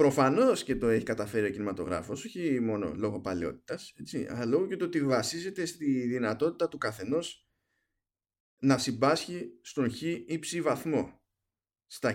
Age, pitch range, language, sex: 20-39, 110-150 Hz, Greek, male